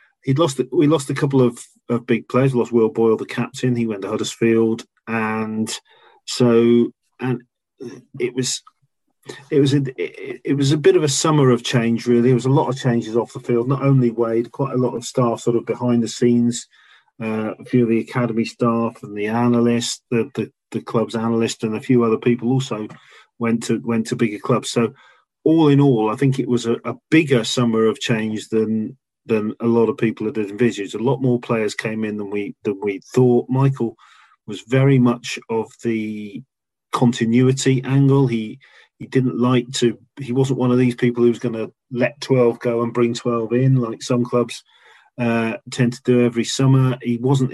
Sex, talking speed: male, 205 wpm